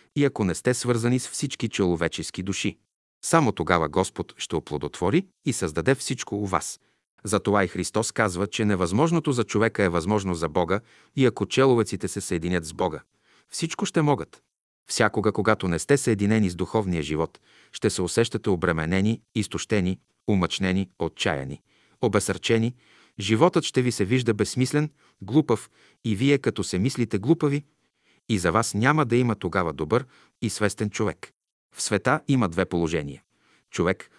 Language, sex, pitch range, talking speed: Bulgarian, male, 90-115 Hz, 155 wpm